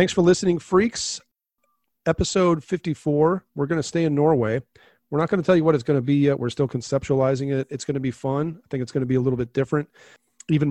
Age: 40-59